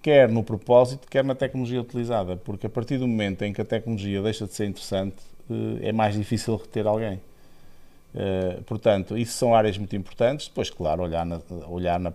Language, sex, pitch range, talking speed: Portuguese, male, 95-120 Hz, 185 wpm